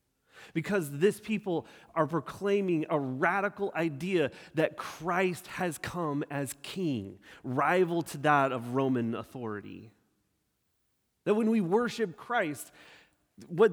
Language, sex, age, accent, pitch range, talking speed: English, male, 30-49, American, 150-230 Hz, 115 wpm